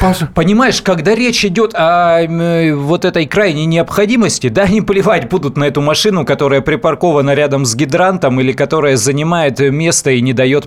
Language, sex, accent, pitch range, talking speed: Russian, male, native, 140-185 Hz, 155 wpm